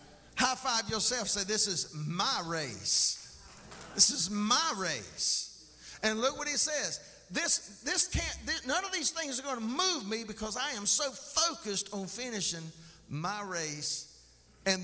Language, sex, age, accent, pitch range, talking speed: English, male, 50-69, American, 145-200 Hz, 160 wpm